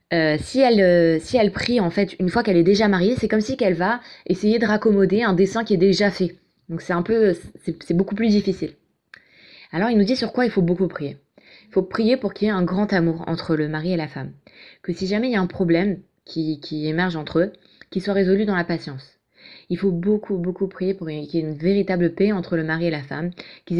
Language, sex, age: French, female, 20-39